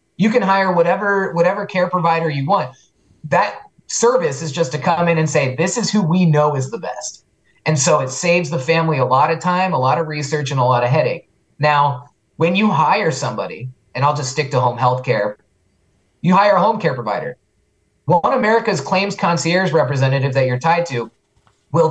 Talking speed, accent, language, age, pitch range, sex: 205 wpm, American, English, 20-39, 125-170 Hz, male